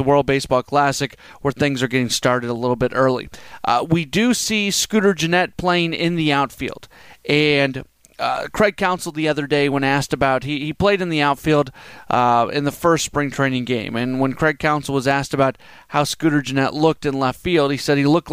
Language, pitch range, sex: English, 130-150 Hz, male